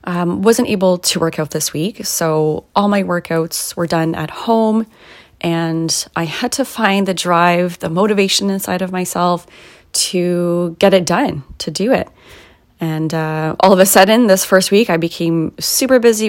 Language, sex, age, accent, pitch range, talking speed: English, female, 30-49, American, 165-200 Hz, 175 wpm